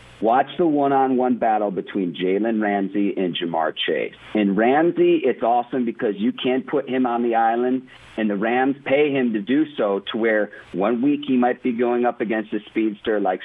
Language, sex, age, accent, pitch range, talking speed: English, male, 50-69, American, 110-140 Hz, 190 wpm